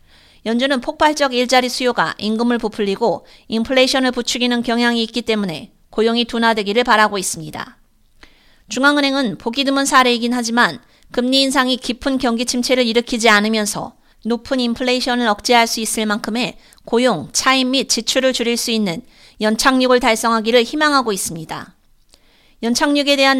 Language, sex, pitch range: Korean, female, 225-270 Hz